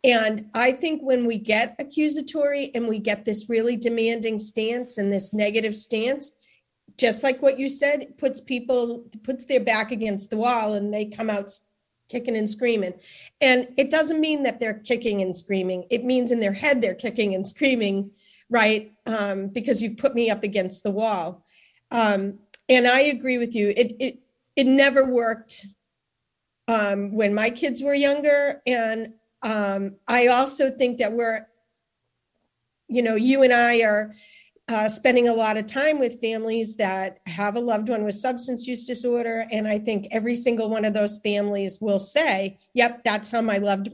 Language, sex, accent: English, female, American